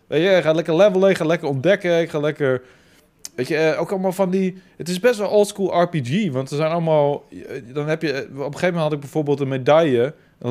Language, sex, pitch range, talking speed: Dutch, male, 120-150 Hz, 235 wpm